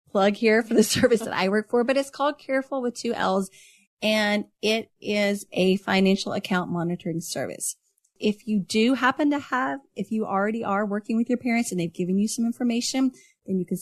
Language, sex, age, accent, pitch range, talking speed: English, female, 30-49, American, 185-235 Hz, 200 wpm